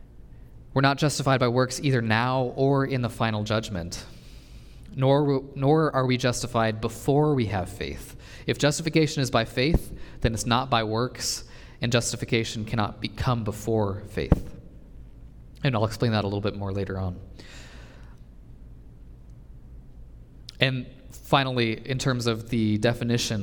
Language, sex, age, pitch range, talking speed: English, male, 20-39, 105-130 Hz, 140 wpm